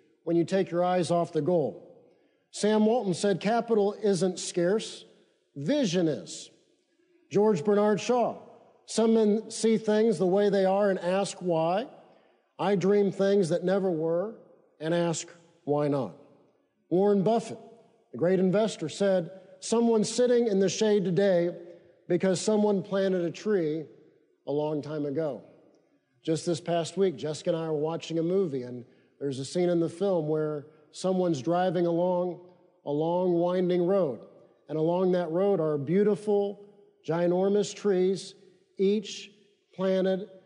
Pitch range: 170-205 Hz